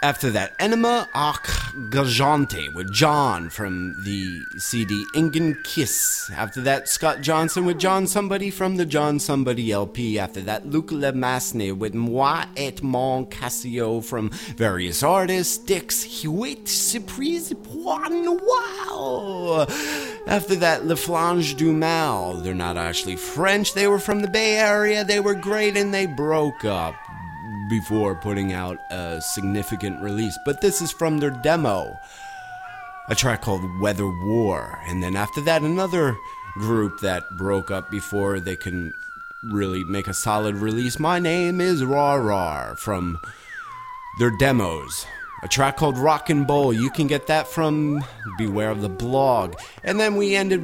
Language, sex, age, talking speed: English, male, 30-49, 150 wpm